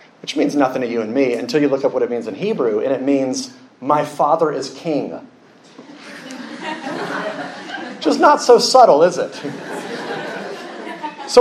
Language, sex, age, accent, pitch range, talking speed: English, male, 30-49, American, 160-205 Hz, 160 wpm